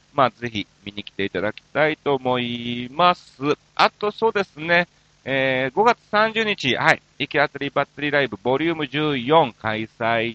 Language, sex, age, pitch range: Japanese, male, 40-59, 110-165 Hz